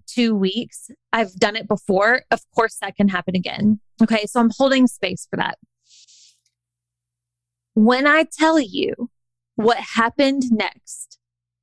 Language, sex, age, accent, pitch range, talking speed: English, female, 20-39, American, 185-240 Hz, 135 wpm